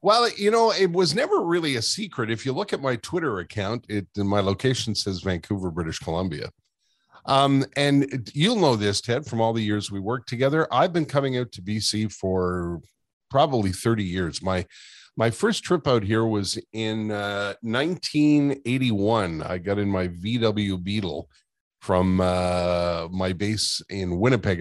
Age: 50-69